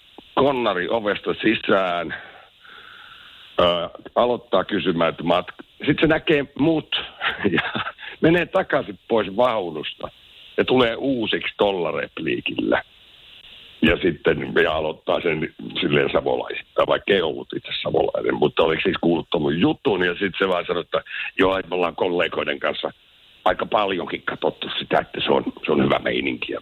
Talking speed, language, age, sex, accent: 135 wpm, Finnish, 60-79, male, native